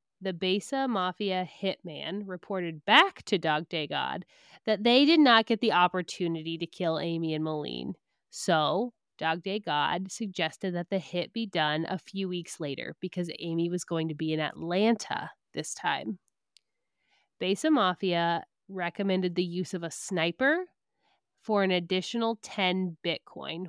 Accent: American